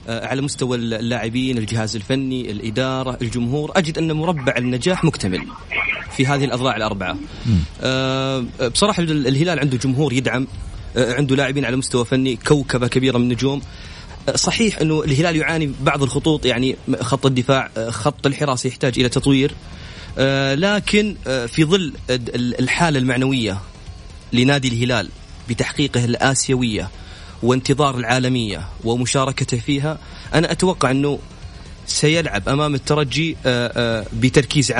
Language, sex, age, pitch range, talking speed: Arabic, male, 30-49, 120-145 Hz, 110 wpm